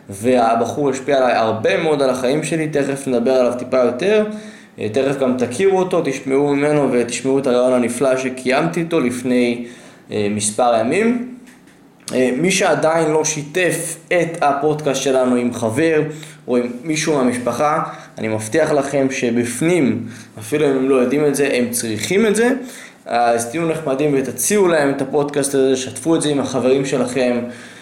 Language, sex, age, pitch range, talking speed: Hebrew, male, 20-39, 125-155 Hz, 150 wpm